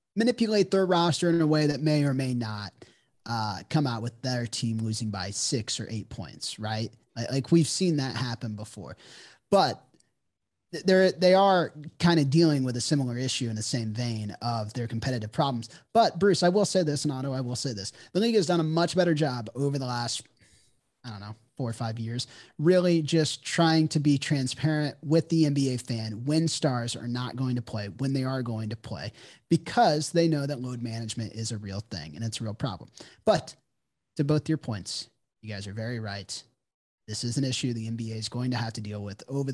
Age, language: 30-49, English